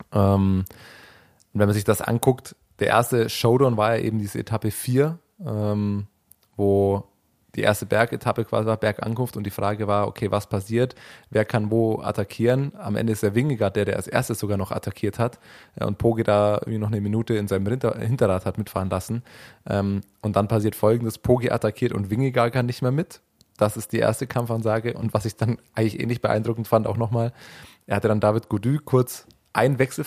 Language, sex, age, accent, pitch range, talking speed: German, male, 20-39, German, 105-120 Hz, 200 wpm